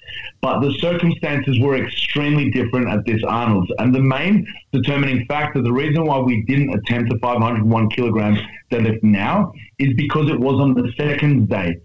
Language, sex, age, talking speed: English, male, 30-49, 165 wpm